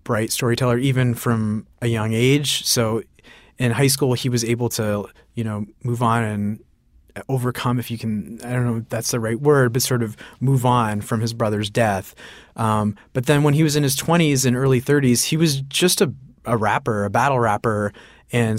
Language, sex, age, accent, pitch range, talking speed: English, male, 30-49, American, 110-130 Hz, 205 wpm